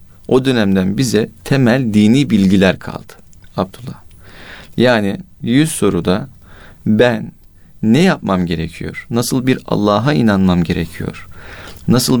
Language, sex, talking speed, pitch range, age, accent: Turkish, male, 105 wpm, 95-125 Hz, 40-59, native